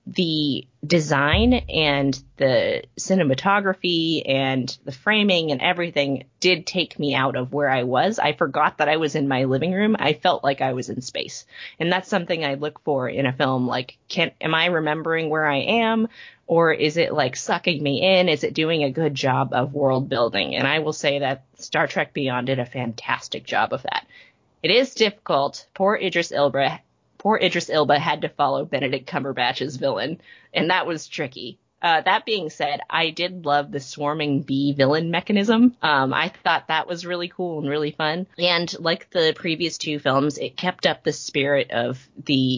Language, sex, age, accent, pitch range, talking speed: English, female, 20-39, American, 135-175 Hz, 190 wpm